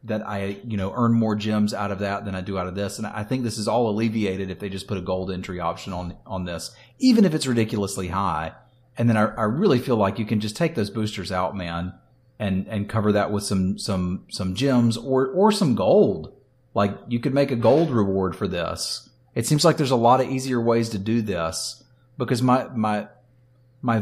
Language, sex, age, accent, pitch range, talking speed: English, male, 30-49, American, 100-125 Hz, 230 wpm